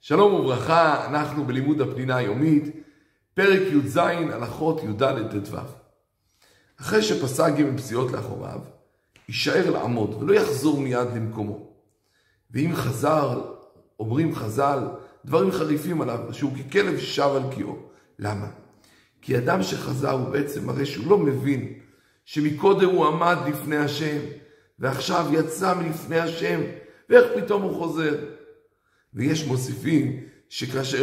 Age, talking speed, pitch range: 50-69, 115 wpm, 130-155 Hz